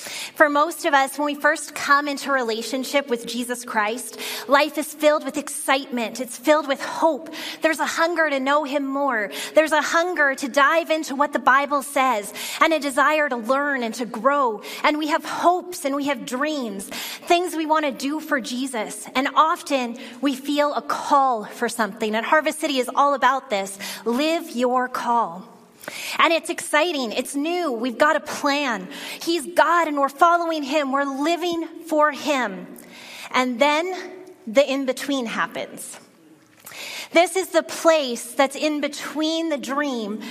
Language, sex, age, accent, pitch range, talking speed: English, female, 30-49, American, 255-315 Hz, 170 wpm